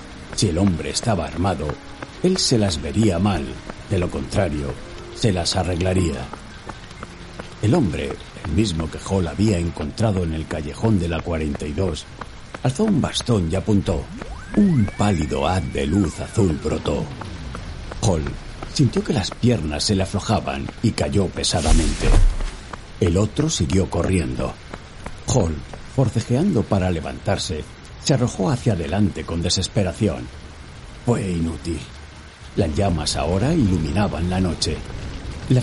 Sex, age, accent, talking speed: male, 60-79, Spanish, 130 wpm